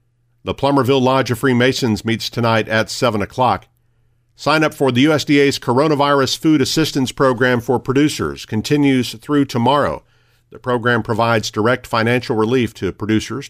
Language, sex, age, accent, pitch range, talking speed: English, male, 50-69, American, 110-135 Hz, 140 wpm